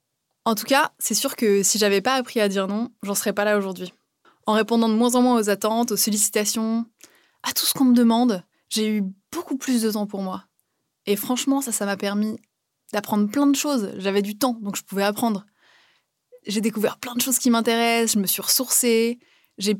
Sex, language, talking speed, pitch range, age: female, French, 215 wpm, 200-245 Hz, 20-39